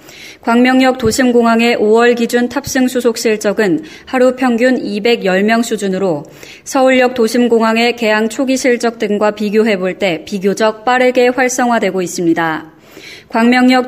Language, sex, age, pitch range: Korean, female, 20-39, 210-245 Hz